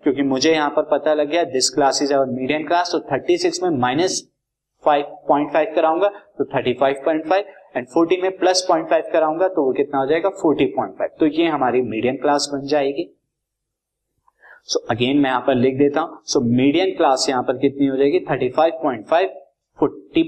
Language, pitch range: Hindi, 140-170 Hz